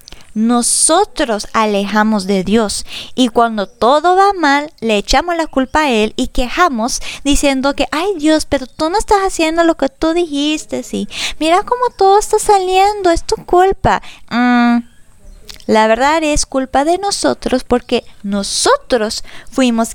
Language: Spanish